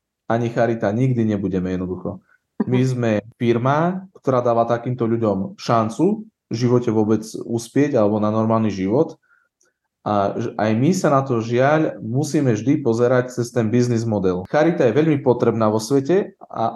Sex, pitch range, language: male, 110-145 Hz, Slovak